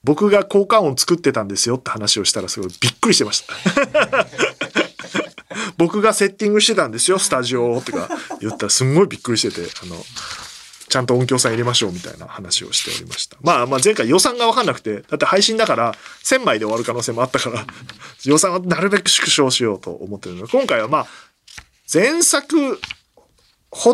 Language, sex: Japanese, male